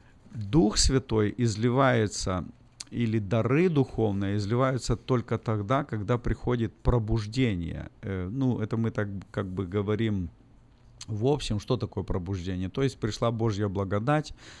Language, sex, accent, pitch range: Russian, male, native, 100-125 Hz